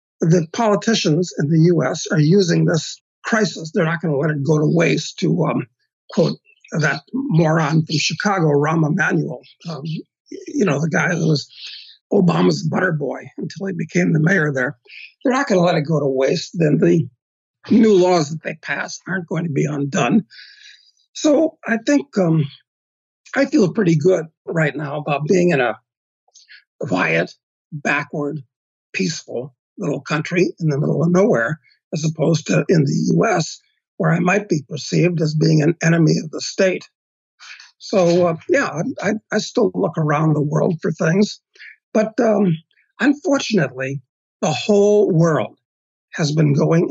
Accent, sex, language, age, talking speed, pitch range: American, male, English, 50-69, 160 wpm, 150-190 Hz